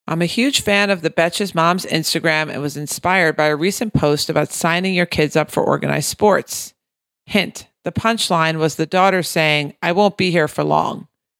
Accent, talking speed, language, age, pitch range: American, 195 wpm, English, 40-59, 155-195 Hz